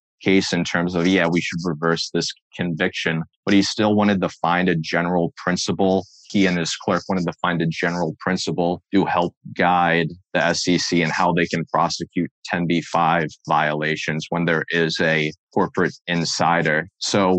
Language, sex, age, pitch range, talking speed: English, male, 30-49, 85-95 Hz, 165 wpm